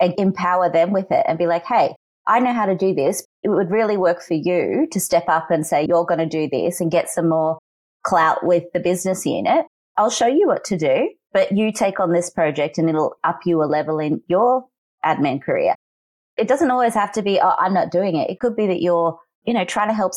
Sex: female